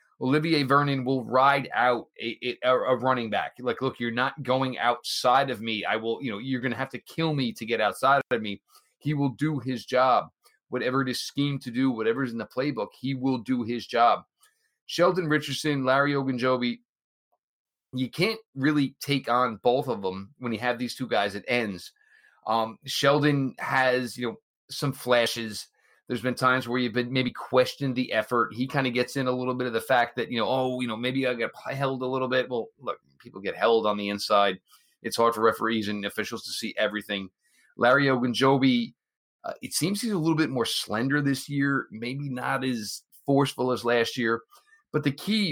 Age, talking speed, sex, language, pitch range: 30-49, 205 wpm, male, English, 115-135 Hz